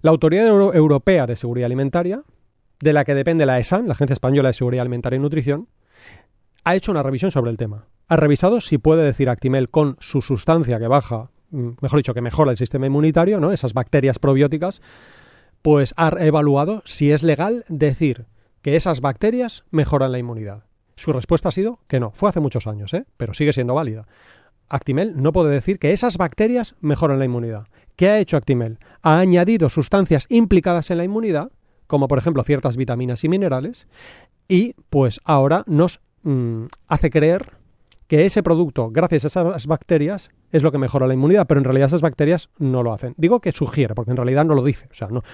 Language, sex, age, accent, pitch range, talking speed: Spanish, male, 30-49, Spanish, 125-170 Hz, 190 wpm